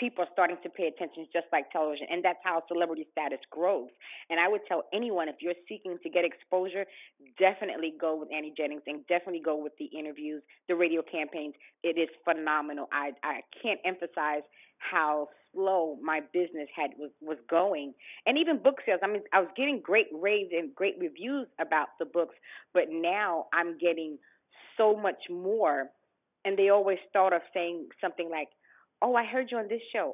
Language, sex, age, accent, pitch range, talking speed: English, female, 30-49, American, 160-205 Hz, 185 wpm